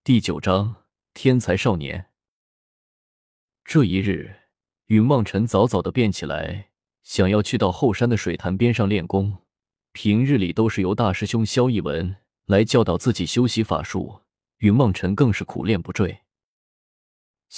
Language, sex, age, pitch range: Chinese, male, 20-39, 95-115 Hz